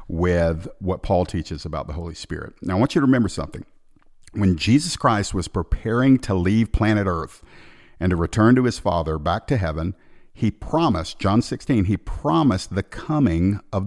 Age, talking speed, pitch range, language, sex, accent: 50-69, 180 wpm, 90-115 Hz, English, male, American